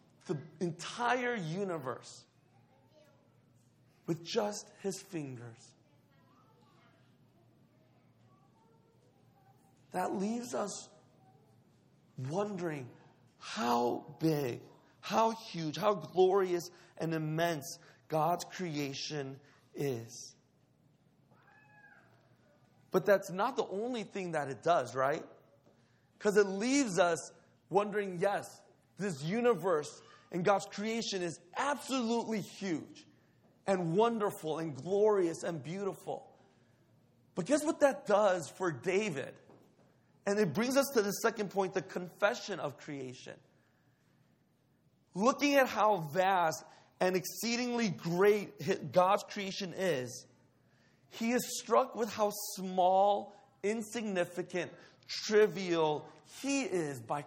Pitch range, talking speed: 150-210 Hz, 95 wpm